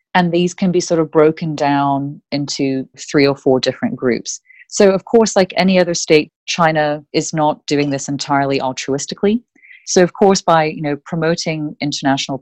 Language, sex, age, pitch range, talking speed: English, female, 30-49, 140-175 Hz, 175 wpm